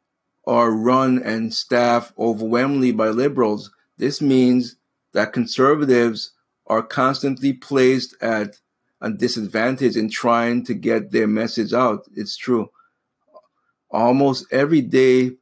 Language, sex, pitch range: English, male, 115-130 Hz